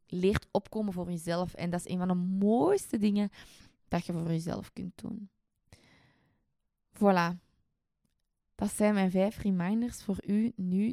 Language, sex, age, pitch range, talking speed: Dutch, female, 20-39, 170-210 Hz, 150 wpm